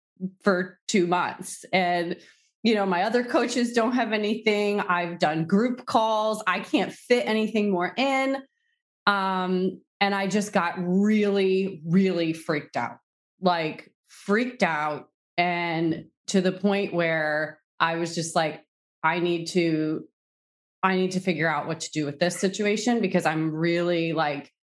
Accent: American